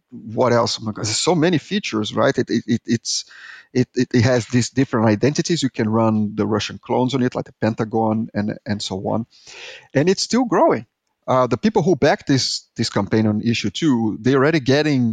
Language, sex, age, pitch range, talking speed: English, male, 30-49, 110-125 Hz, 210 wpm